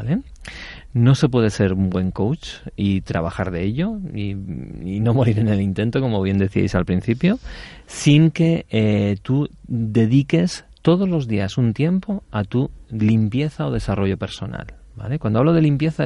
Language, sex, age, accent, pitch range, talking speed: Spanish, male, 40-59, Spanish, 100-130 Hz, 170 wpm